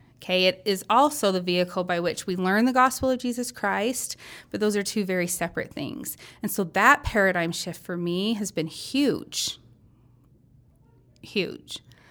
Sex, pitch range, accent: female, 175-205 Hz, American